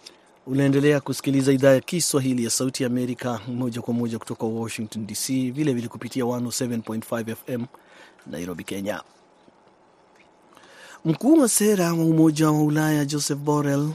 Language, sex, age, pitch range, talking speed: Swahili, male, 30-49, 120-135 Hz, 125 wpm